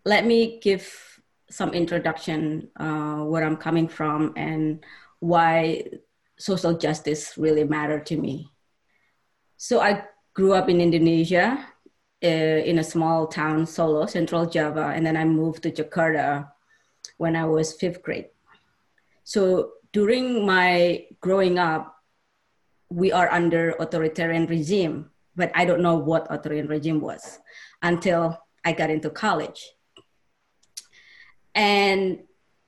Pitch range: 160-195 Hz